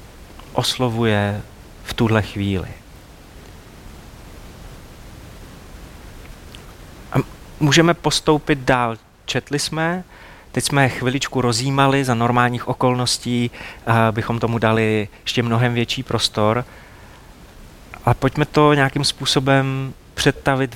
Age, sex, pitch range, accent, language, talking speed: 30-49, male, 115-140 Hz, native, Czech, 95 wpm